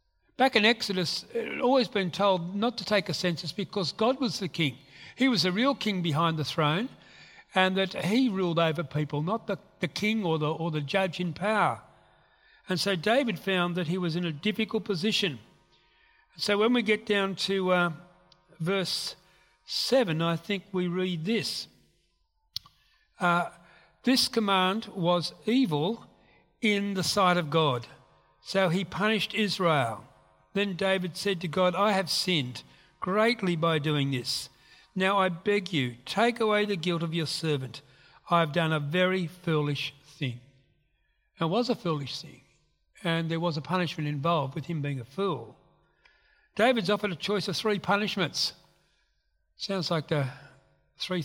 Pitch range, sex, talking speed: 155-205 Hz, male, 160 wpm